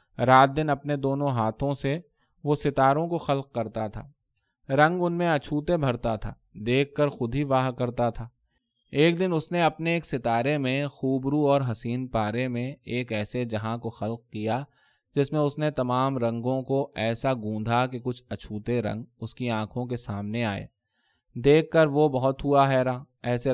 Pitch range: 115-145 Hz